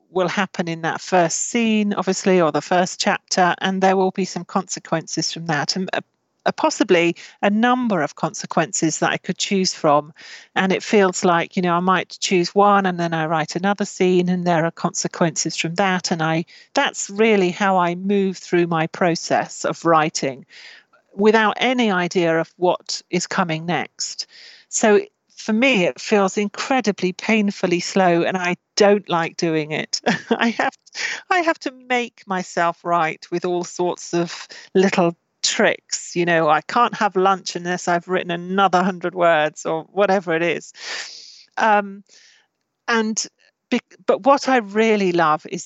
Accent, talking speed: British, 165 wpm